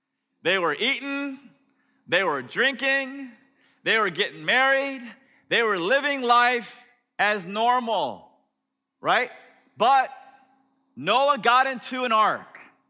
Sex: male